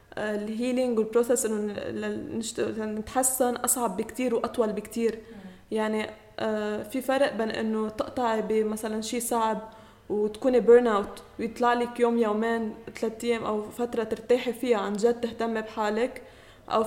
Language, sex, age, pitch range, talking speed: Arabic, female, 20-39, 220-250 Hz, 125 wpm